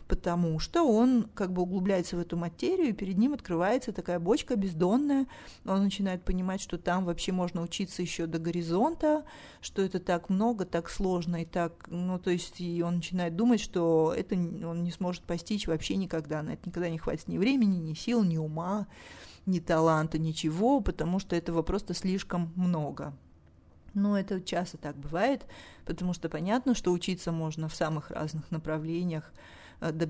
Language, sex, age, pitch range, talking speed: Russian, female, 30-49, 165-205 Hz, 170 wpm